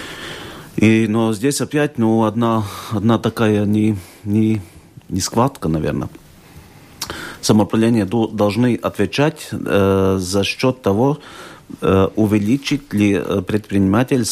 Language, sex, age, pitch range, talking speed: Russian, male, 50-69, 95-110 Hz, 100 wpm